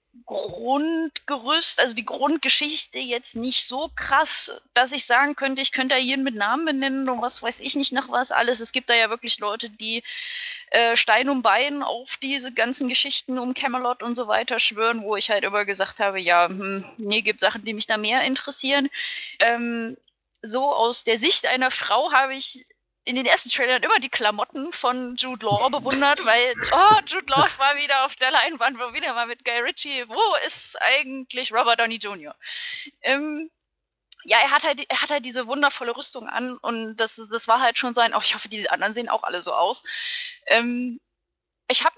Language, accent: German, German